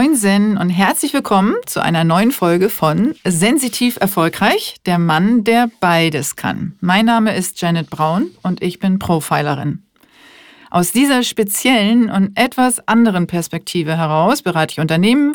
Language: German